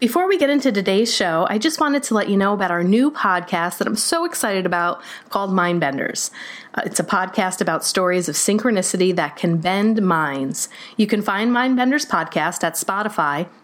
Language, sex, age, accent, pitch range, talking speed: English, female, 30-49, American, 185-250 Hz, 185 wpm